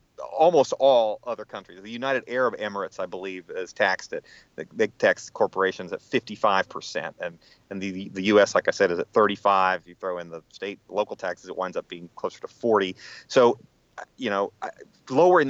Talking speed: 190 wpm